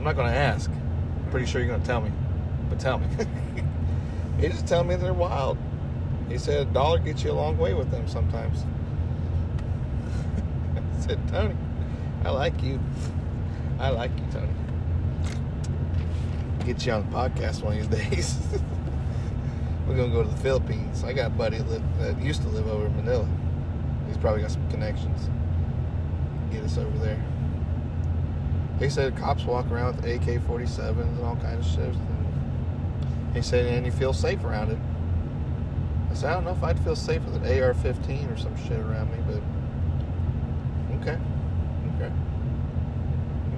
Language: English